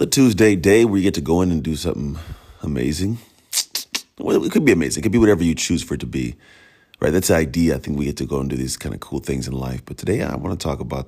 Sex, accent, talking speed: male, American, 285 wpm